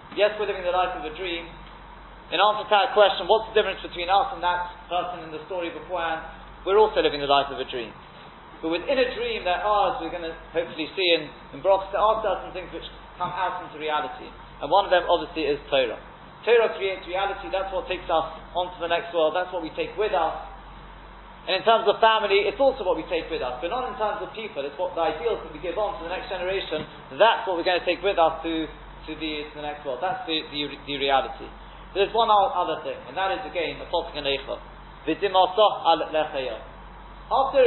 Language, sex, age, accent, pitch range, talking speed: English, male, 30-49, British, 165-210 Hz, 225 wpm